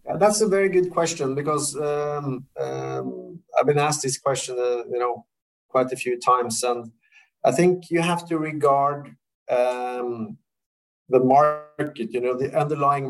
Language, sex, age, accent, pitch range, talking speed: English, male, 30-49, Norwegian, 120-140 Hz, 160 wpm